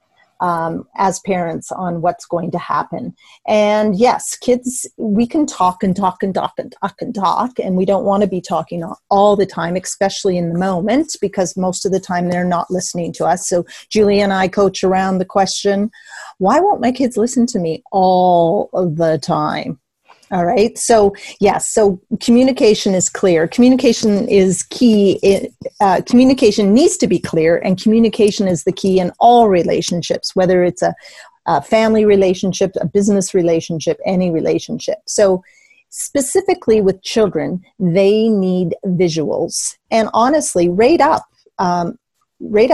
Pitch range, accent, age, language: 180-220 Hz, American, 40-59, English